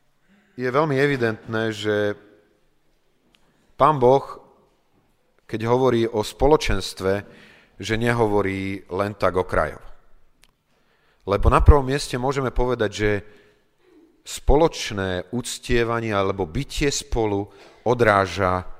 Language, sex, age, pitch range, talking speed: Slovak, male, 40-59, 100-130 Hz, 95 wpm